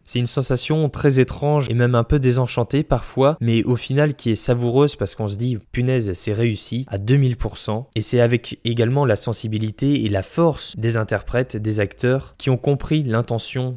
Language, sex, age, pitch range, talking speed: French, male, 20-39, 110-130 Hz, 185 wpm